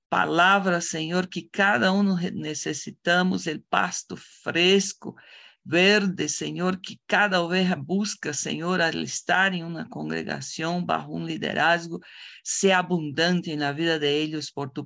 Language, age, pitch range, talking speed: Spanish, 50-69, 150-185 Hz, 135 wpm